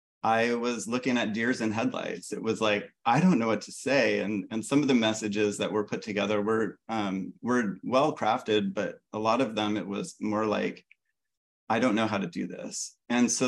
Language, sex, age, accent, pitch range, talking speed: English, male, 30-49, American, 105-115 Hz, 215 wpm